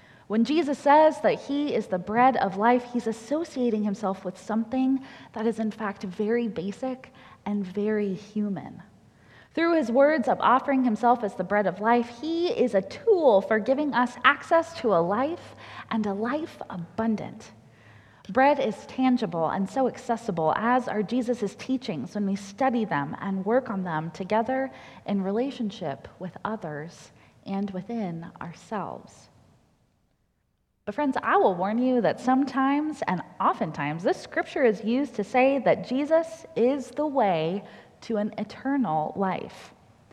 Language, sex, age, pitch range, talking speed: English, female, 20-39, 200-260 Hz, 150 wpm